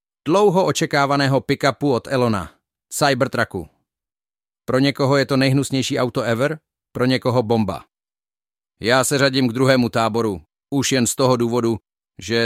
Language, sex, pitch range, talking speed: Czech, male, 120-140 Hz, 135 wpm